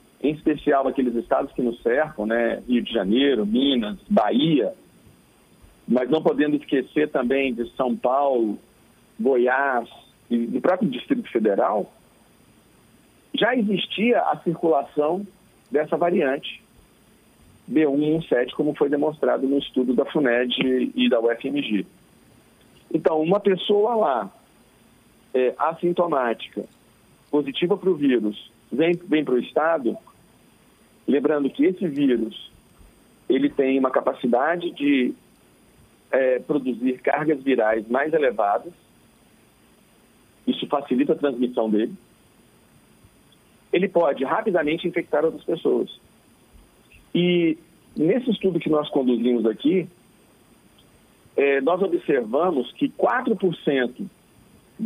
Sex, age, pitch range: male, 50-69, 125-180 Hz